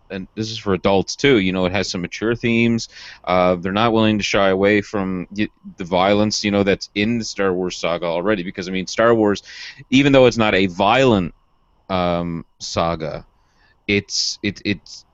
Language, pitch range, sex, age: English, 90-115 Hz, male, 30-49